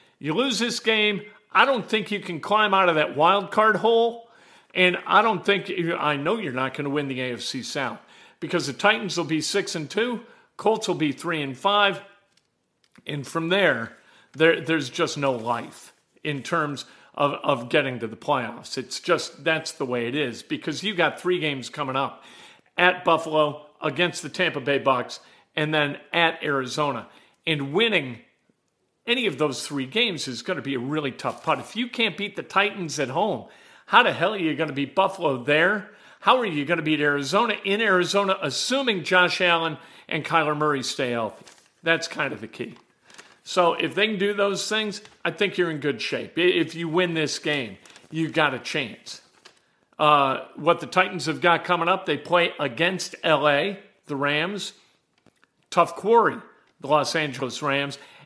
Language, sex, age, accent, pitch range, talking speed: English, male, 50-69, American, 145-195 Hz, 185 wpm